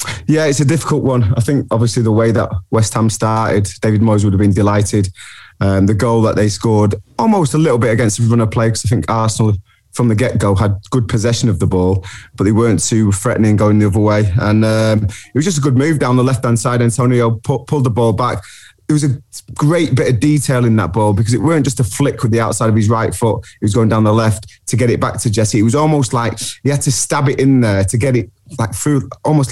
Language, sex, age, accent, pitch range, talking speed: English, male, 20-39, British, 105-125 Hz, 260 wpm